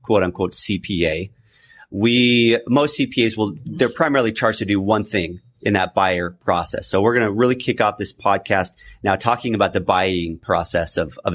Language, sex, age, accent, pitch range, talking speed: English, male, 30-49, American, 100-125 Hz, 185 wpm